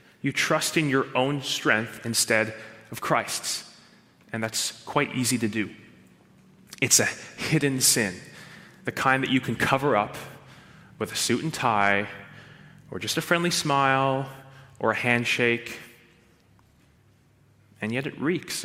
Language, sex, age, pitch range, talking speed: English, male, 30-49, 115-135 Hz, 140 wpm